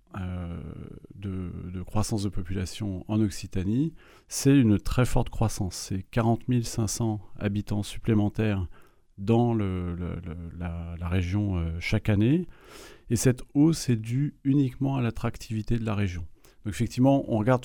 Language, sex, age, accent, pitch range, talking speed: French, male, 30-49, French, 100-120 Hz, 135 wpm